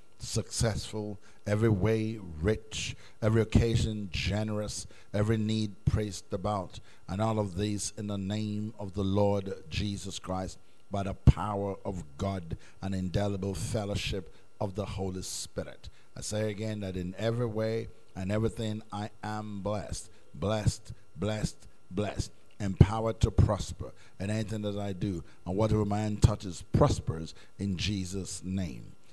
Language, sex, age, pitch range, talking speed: English, male, 50-69, 95-110 Hz, 135 wpm